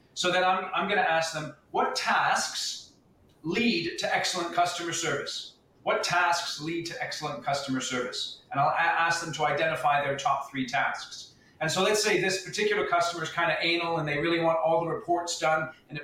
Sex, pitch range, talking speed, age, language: male, 150-185 Hz, 200 wpm, 40-59, English